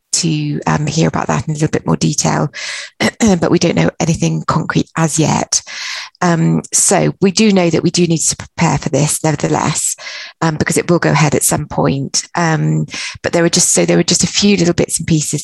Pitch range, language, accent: 150-170 Hz, English, British